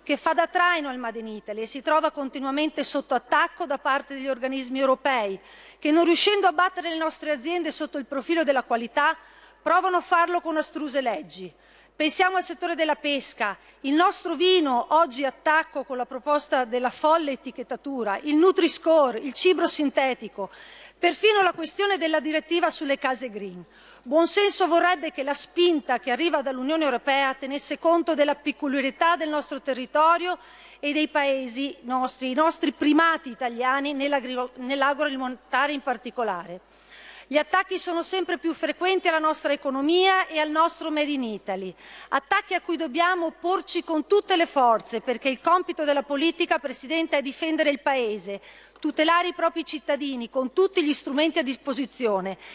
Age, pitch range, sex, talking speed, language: 40-59, 270-335 Hz, female, 160 wpm, Italian